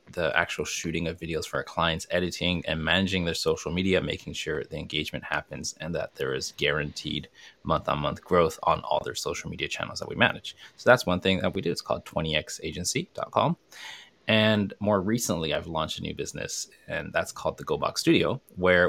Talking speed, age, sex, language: 195 wpm, 20-39, male, English